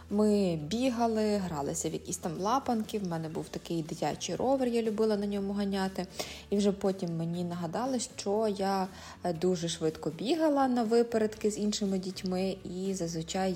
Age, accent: 20-39, native